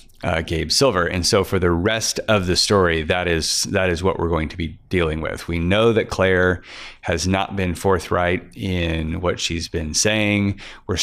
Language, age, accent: English, 30-49, American